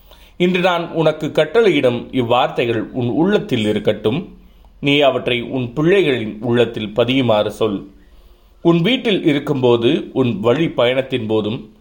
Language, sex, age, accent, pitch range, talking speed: Tamil, male, 30-49, native, 110-145 Hz, 105 wpm